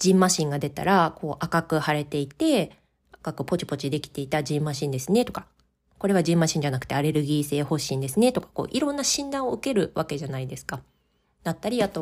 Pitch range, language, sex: 140-220 Hz, Japanese, female